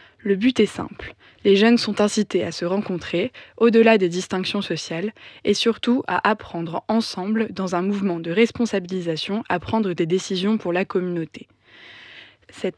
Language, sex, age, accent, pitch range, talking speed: French, female, 20-39, French, 180-215 Hz, 155 wpm